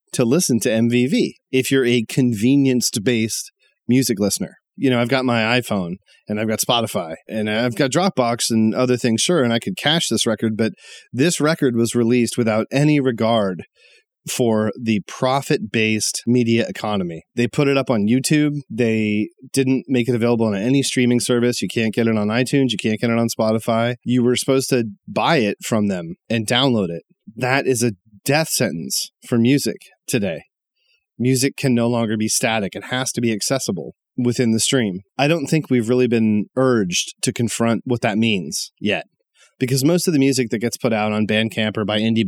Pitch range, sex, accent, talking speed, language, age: 110-130 Hz, male, American, 190 wpm, English, 30-49